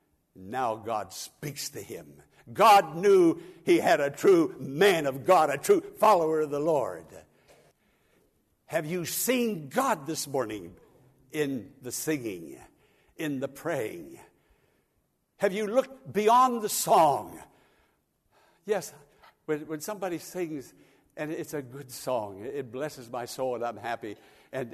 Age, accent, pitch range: 60-79, American, 150-245 Hz